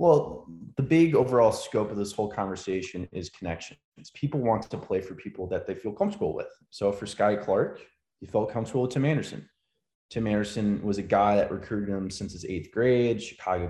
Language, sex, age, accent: English, male, 20-39, American